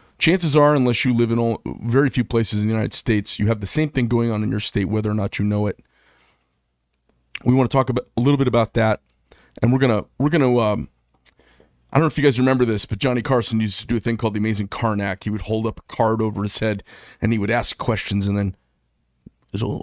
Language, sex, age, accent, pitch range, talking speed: English, male, 30-49, American, 100-125 Hz, 255 wpm